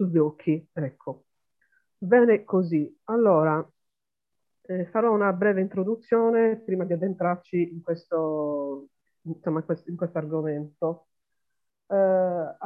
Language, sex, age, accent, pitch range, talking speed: Italian, female, 40-59, native, 160-195 Hz, 100 wpm